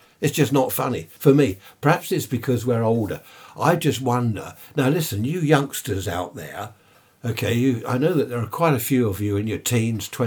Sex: male